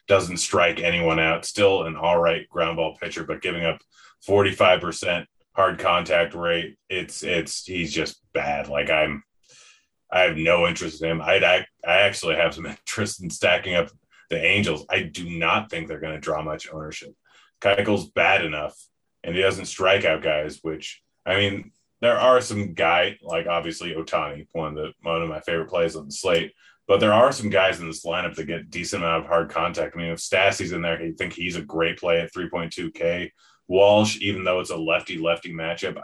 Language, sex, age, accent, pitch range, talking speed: English, male, 30-49, American, 80-95 Hz, 200 wpm